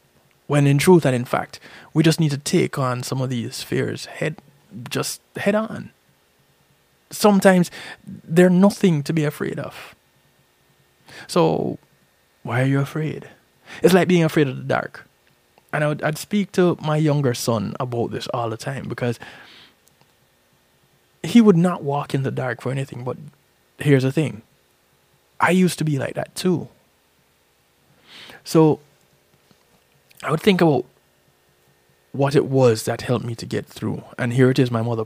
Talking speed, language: 160 wpm, English